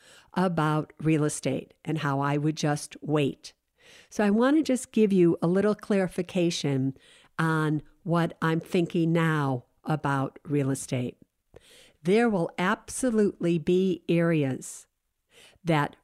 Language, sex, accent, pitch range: English, female, American, 155-215 Hz